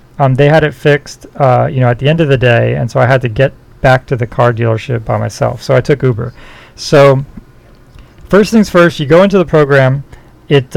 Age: 40-59